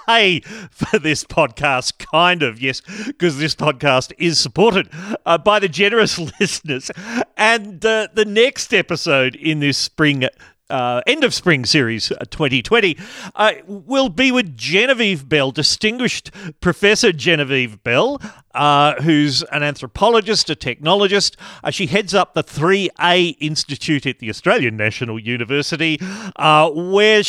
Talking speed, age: 135 wpm, 40-59